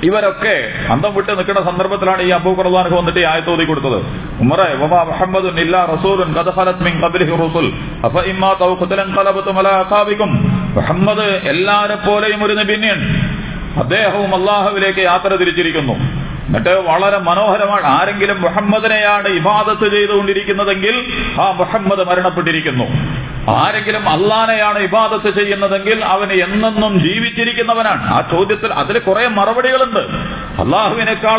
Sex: male